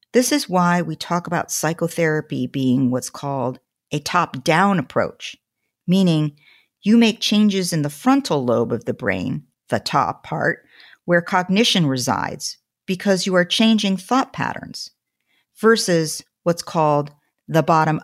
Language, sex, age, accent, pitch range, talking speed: English, female, 50-69, American, 145-200 Hz, 140 wpm